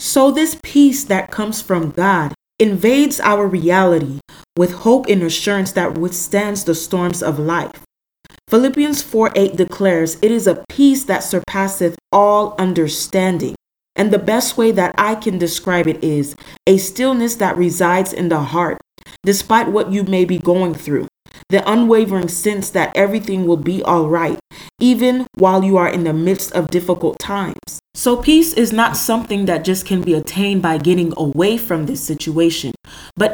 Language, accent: English, American